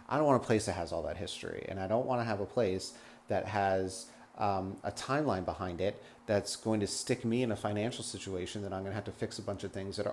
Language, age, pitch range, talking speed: English, 30-49, 95-120 Hz, 275 wpm